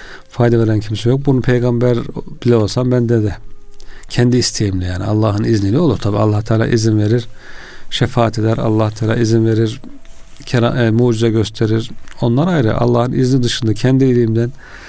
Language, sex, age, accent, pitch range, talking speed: Turkish, male, 40-59, native, 110-130 Hz, 145 wpm